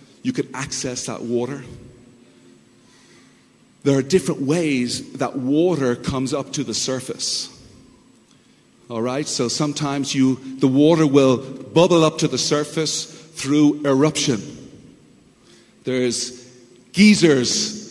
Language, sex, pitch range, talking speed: English, male, 140-200 Hz, 110 wpm